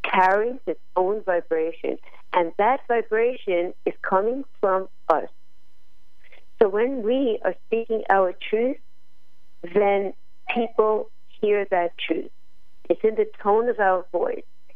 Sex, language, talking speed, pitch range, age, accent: female, English, 120 wpm, 180-240 Hz, 50-69, American